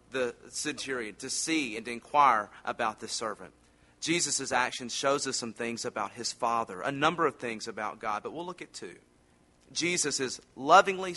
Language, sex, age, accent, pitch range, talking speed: English, male, 40-59, American, 100-165 Hz, 175 wpm